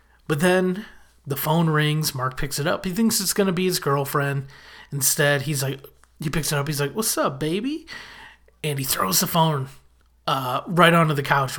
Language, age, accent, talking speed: English, 30-49, American, 200 wpm